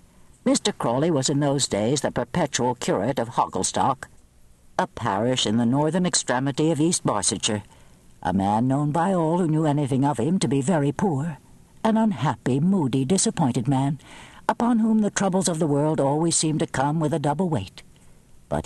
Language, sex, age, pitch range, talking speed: English, female, 60-79, 120-180 Hz, 175 wpm